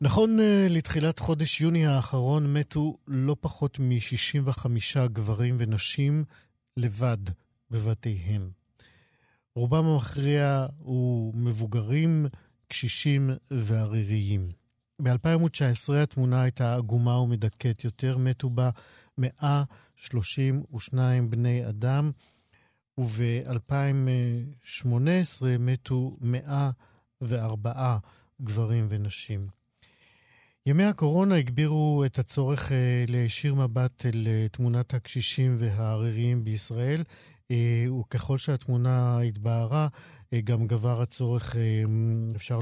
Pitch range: 115-135 Hz